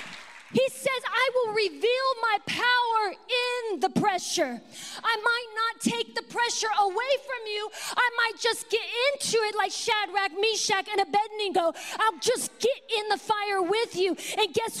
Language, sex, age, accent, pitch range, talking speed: English, female, 30-49, American, 345-445 Hz, 160 wpm